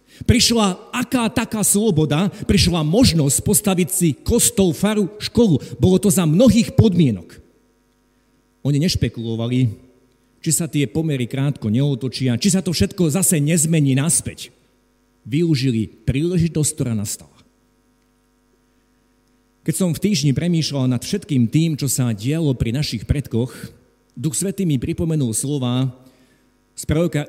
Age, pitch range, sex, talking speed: 50-69, 125-175 Hz, male, 125 wpm